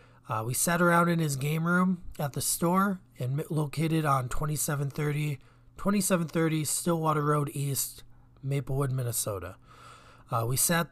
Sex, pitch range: male, 135-170 Hz